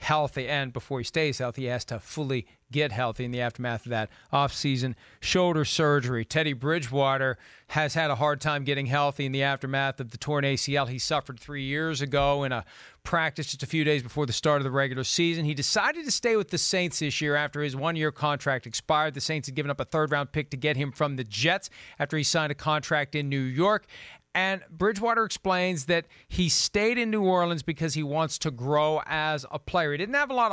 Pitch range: 145-185 Hz